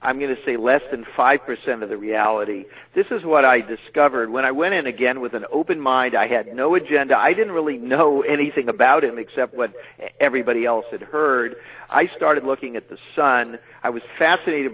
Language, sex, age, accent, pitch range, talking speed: English, male, 50-69, American, 130-170 Hz, 205 wpm